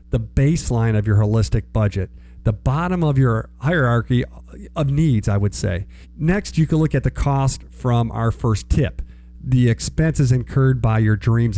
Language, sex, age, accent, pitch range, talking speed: English, male, 50-69, American, 105-140 Hz, 170 wpm